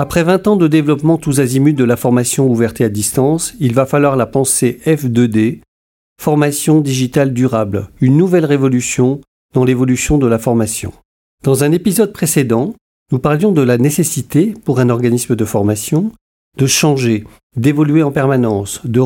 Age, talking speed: 50-69, 155 wpm